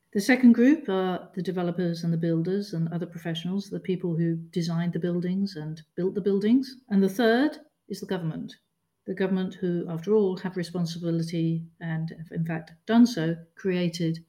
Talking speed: 175 wpm